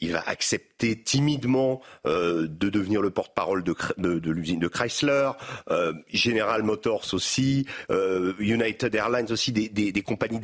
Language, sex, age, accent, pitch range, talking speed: French, male, 50-69, French, 100-130 Hz, 150 wpm